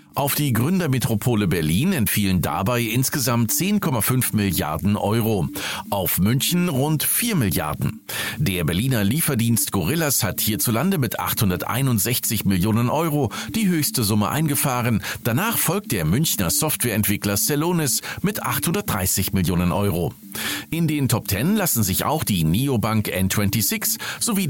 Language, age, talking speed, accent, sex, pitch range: German, 40-59, 120 wpm, German, male, 100-155 Hz